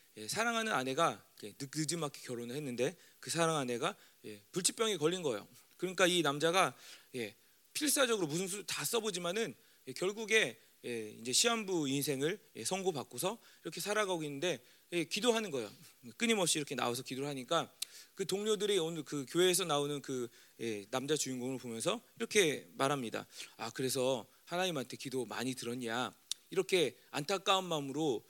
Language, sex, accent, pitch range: Korean, male, native, 125-185 Hz